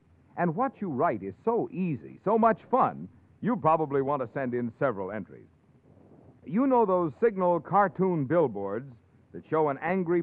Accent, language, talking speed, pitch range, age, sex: American, English, 165 wpm, 135-210 Hz, 60-79, male